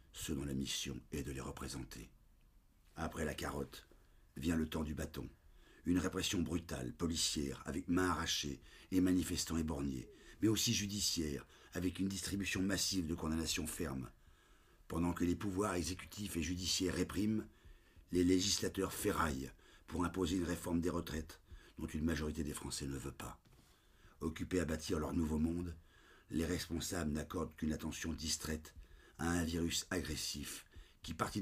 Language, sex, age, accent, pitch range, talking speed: English, male, 50-69, French, 75-90 Hz, 150 wpm